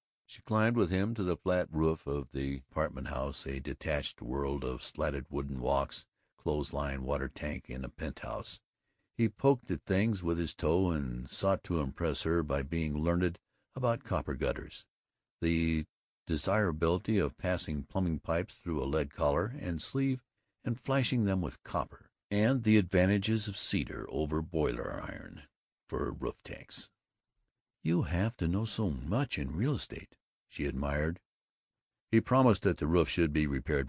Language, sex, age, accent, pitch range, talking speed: English, male, 60-79, American, 75-105 Hz, 160 wpm